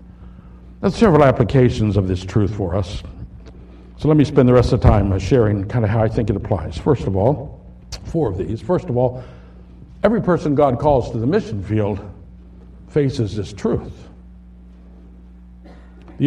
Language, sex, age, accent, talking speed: English, male, 60-79, American, 170 wpm